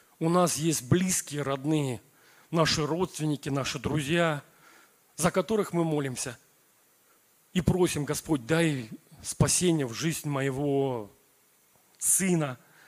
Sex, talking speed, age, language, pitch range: male, 100 wpm, 40-59, Russian, 140-175 Hz